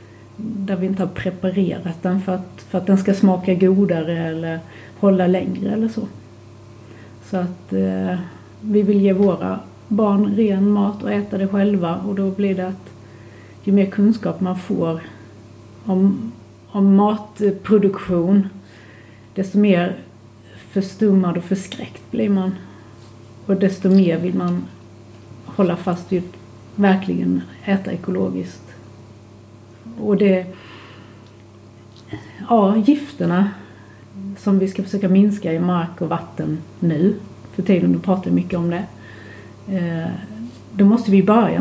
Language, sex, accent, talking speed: English, female, Swedish, 130 wpm